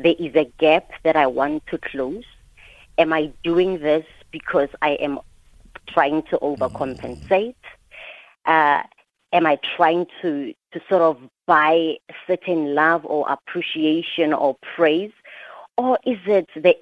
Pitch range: 155-195 Hz